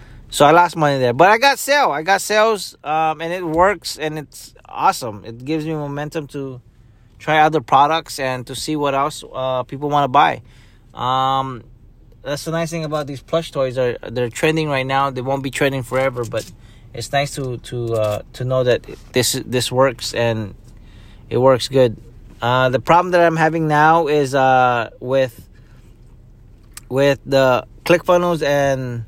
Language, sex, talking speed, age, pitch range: English, male, 180 wpm, 20-39, 115-145 Hz